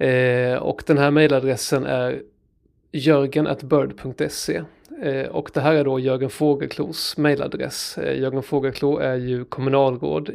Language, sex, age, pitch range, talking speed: Swedish, male, 30-49, 130-155 Hz, 120 wpm